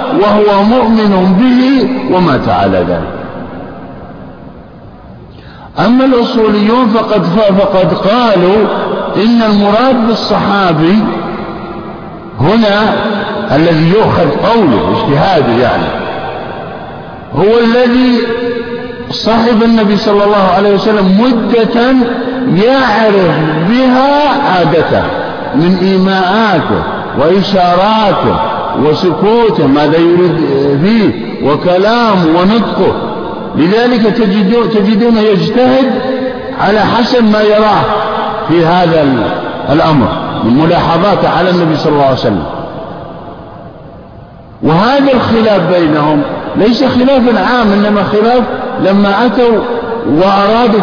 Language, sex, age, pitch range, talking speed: Arabic, male, 50-69, 180-235 Hz, 80 wpm